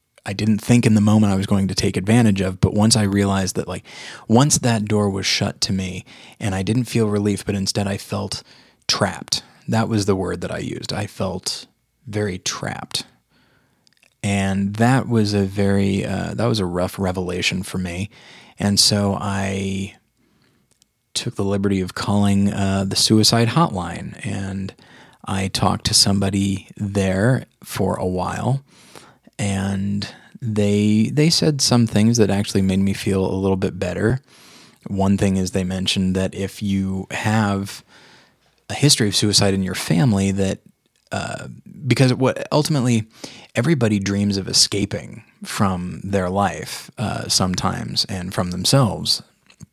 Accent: American